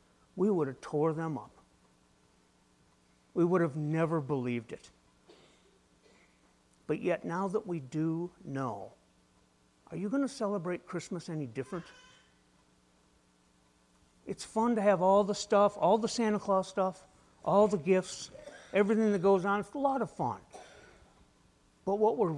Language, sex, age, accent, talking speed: English, male, 60-79, American, 145 wpm